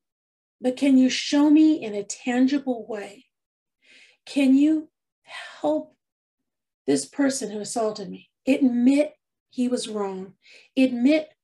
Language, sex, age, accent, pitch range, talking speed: English, female, 40-59, American, 205-275 Hz, 115 wpm